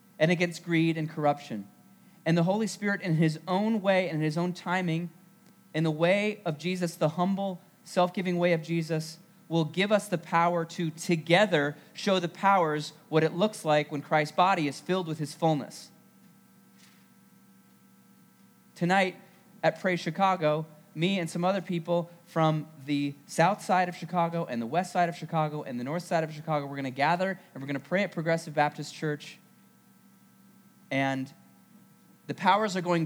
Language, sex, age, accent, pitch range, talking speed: English, male, 30-49, American, 155-185 Hz, 170 wpm